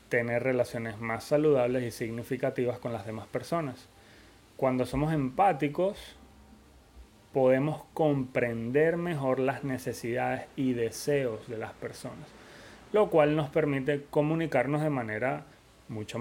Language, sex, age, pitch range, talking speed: Spanish, male, 30-49, 115-145 Hz, 115 wpm